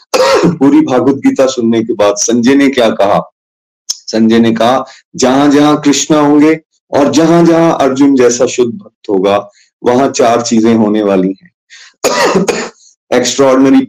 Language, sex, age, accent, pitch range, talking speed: Hindi, male, 30-49, native, 115-165 Hz, 135 wpm